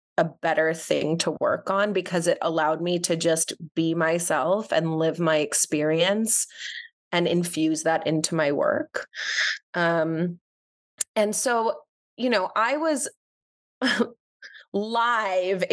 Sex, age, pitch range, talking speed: female, 20-39, 165-200 Hz, 120 wpm